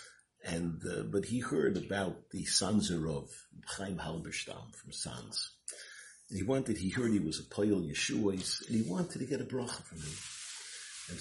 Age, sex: 60-79, male